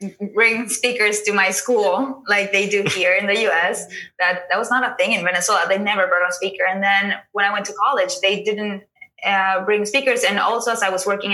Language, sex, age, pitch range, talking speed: English, female, 20-39, 195-230 Hz, 235 wpm